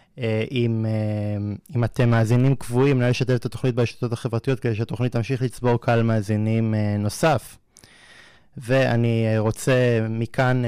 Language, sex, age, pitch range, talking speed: Hebrew, male, 20-39, 115-135 Hz, 110 wpm